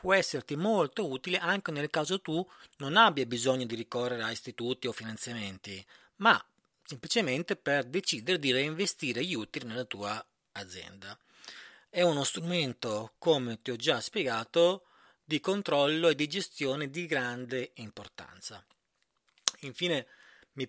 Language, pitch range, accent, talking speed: Italian, 130-170 Hz, native, 135 wpm